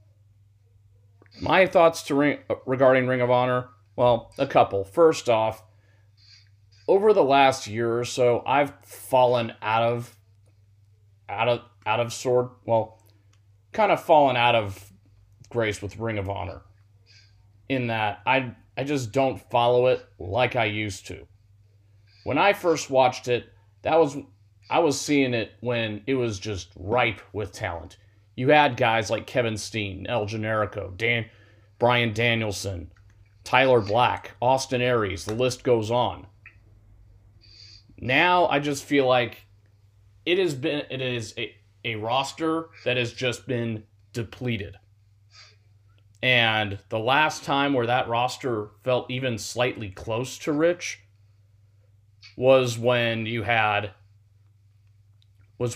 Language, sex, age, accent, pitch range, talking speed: English, male, 30-49, American, 100-125 Hz, 135 wpm